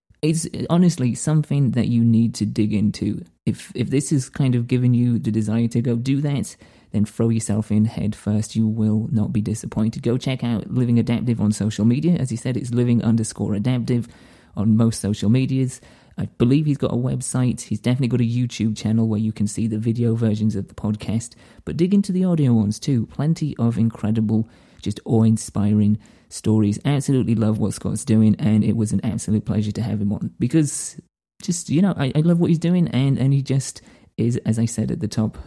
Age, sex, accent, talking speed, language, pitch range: 30-49, male, British, 210 wpm, English, 110-135 Hz